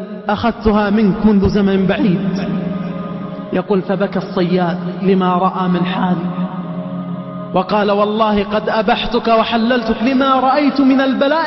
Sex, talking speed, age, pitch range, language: male, 110 wpm, 20-39, 200-255 Hz, Arabic